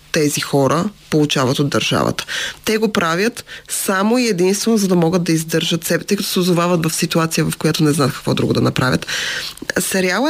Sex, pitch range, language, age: female, 165-215 Hz, Bulgarian, 20-39